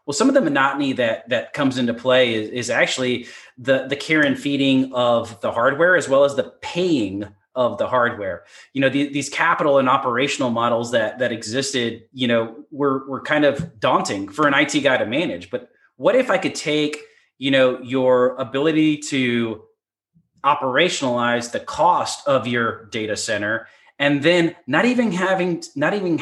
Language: English